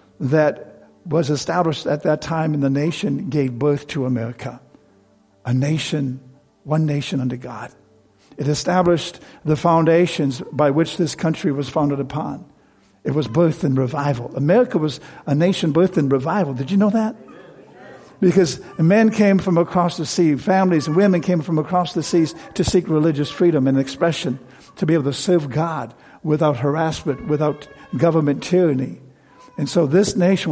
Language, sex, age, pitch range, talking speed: English, male, 60-79, 140-170 Hz, 160 wpm